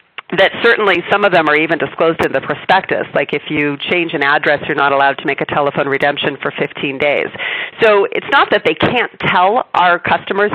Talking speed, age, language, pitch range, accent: 210 wpm, 40-59, English, 150-200 Hz, American